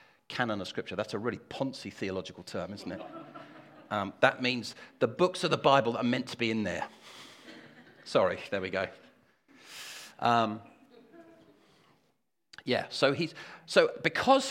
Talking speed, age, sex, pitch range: 145 wpm, 40-59, male, 120-160 Hz